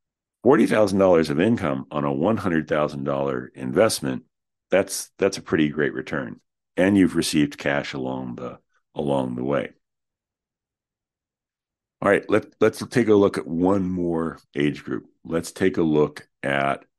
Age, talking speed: 50-69, 140 wpm